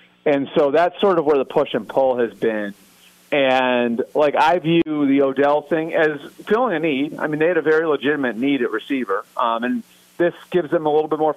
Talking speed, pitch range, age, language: 220 wpm, 120-150 Hz, 40-59, English